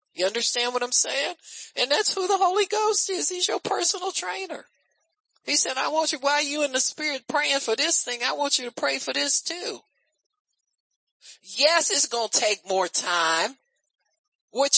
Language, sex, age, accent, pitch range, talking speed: English, male, 50-69, American, 210-315 Hz, 185 wpm